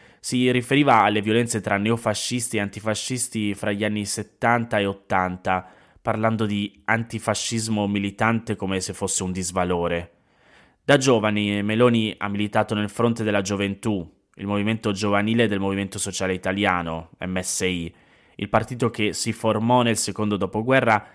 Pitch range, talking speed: 100-120 Hz, 135 wpm